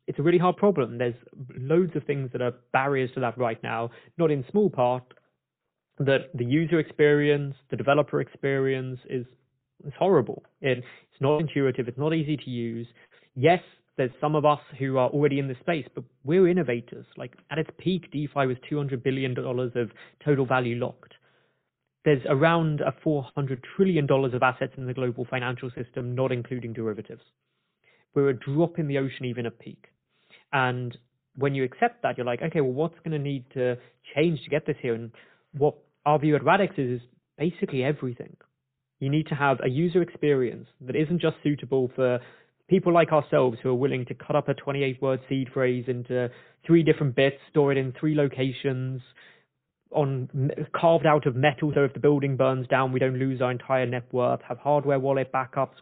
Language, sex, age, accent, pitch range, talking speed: English, male, 20-39, British, 130-150 Hz, 190 wpm